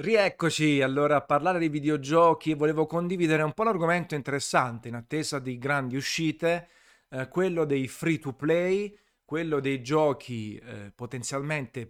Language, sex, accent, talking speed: Italian, male, native, 145 wpm